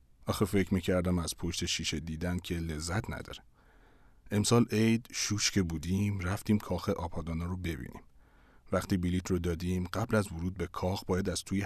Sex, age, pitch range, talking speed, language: male, 40-59, 85-105 Hz, 165 wpm, Persian